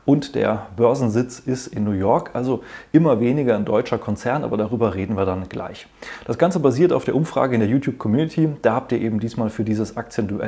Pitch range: 110-125 Hz